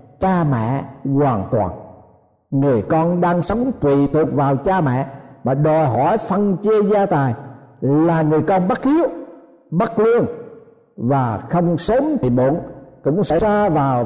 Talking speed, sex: 155 wpm, male